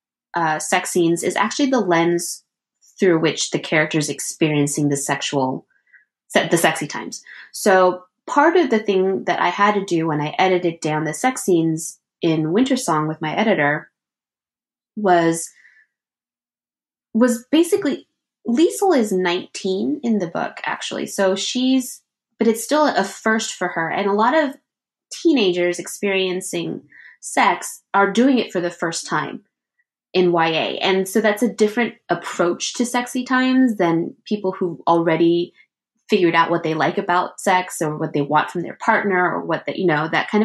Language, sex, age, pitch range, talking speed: English, female, 20-39, 170-240 Hz, 165 wpm